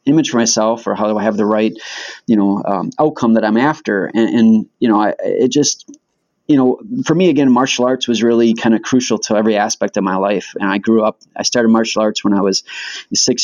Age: 30-49